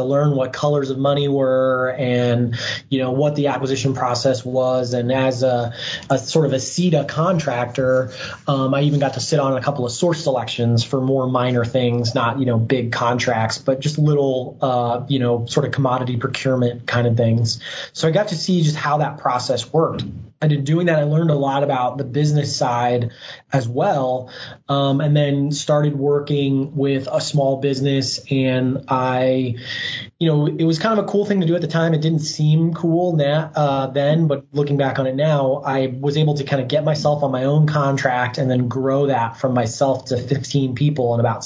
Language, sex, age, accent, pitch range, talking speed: English, male, 20-39, American, 130-150 Hz, 205 wpm